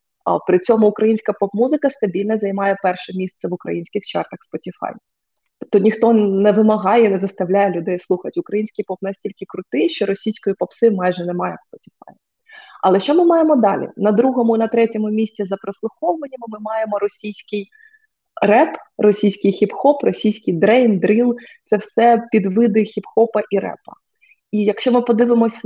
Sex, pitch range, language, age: female, 195-245 Hz, Ukrainian, 20-39